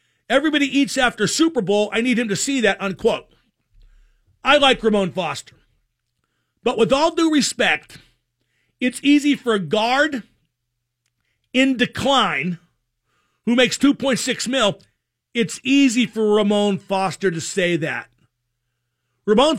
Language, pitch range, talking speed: English, 150-245 Hz, 125 wpm